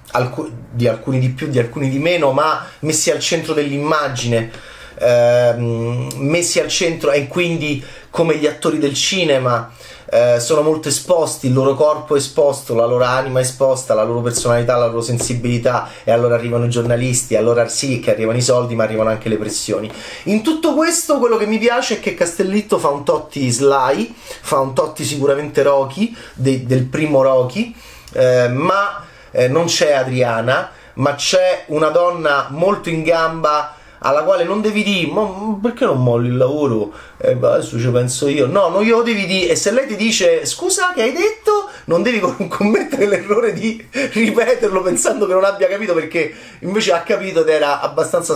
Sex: male